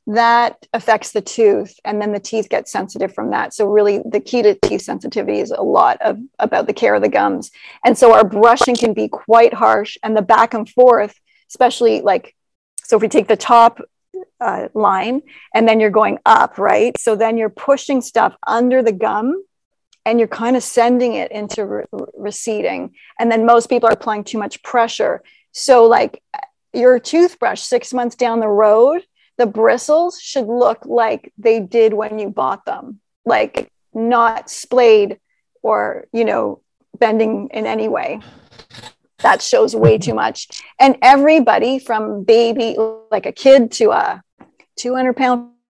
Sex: female